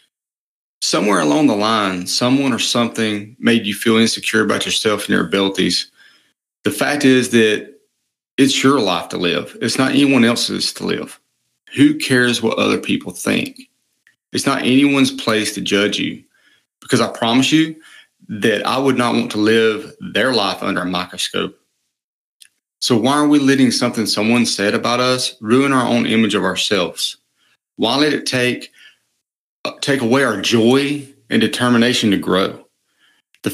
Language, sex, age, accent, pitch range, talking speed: English, male, 30-49, American, 110-135 Hz, 160 wpm